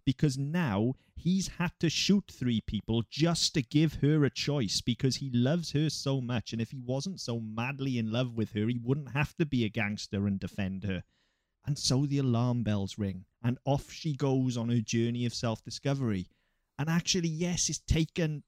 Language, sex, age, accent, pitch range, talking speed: English, male, 30-49, British, 110-155 Hz, 195 wpm